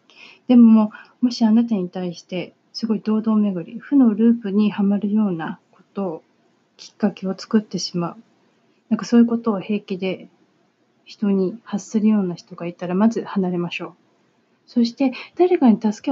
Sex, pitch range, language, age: female, 180-235 Hz, Japanese, 30-49